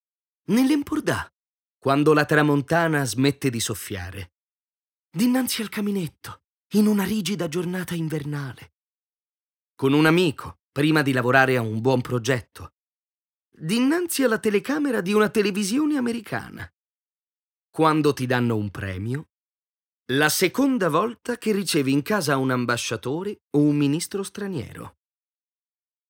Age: 30-49